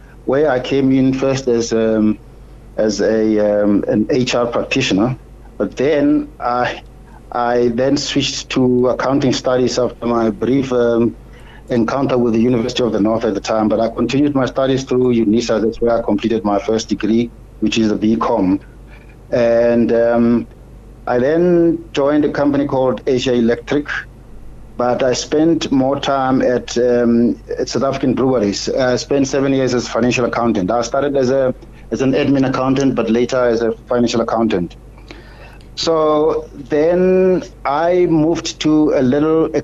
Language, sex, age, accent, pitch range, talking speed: English, male, 60-79, South African, 115-135 Hz, 155 wpm